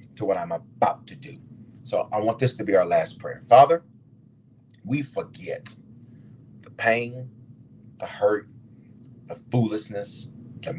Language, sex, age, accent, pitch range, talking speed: English, male, 40-59, American, 120-170 Hz, 135 wpm